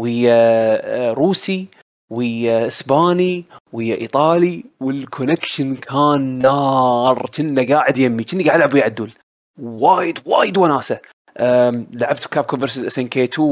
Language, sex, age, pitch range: Arabic, male, 20-39, 120-145 Hz